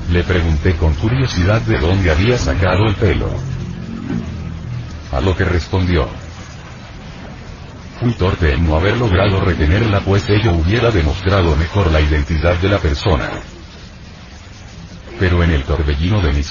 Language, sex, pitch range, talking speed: Spanish, male, 85-105 Hz, 135 wpm